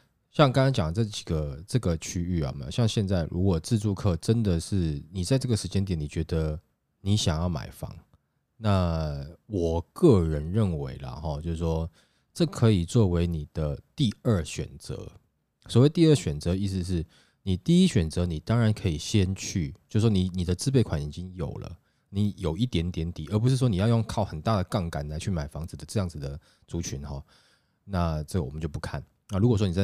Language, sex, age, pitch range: Chinese, male, 20-39, 80-105 Hz